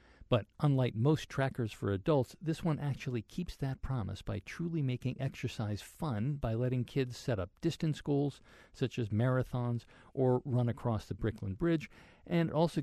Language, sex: English, male